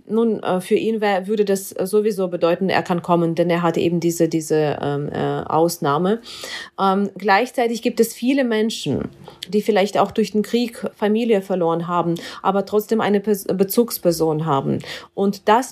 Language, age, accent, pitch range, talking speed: German, 40-59, German, 180-220 Hz, 155 wpm